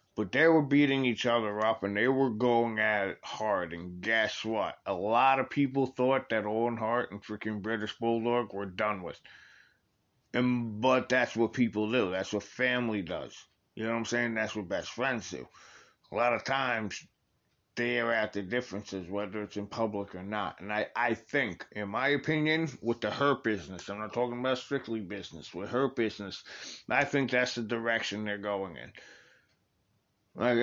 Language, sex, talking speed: English, male, 190 wpm